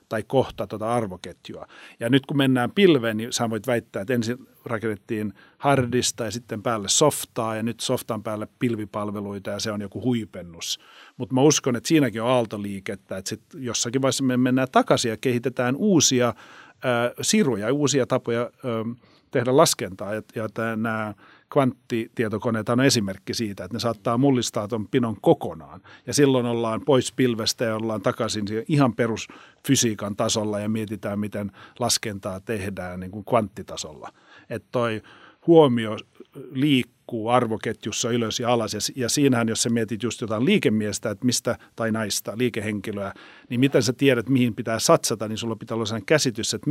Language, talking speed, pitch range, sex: Finnish, 160 wpm, 110-125 Hz, male